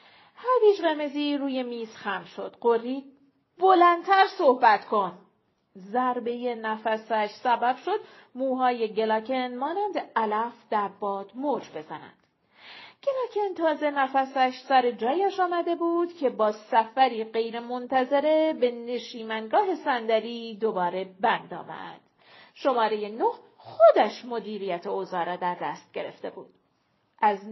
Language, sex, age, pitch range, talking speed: Persian, female, 40-59, 225-305 Hz, 110 wpm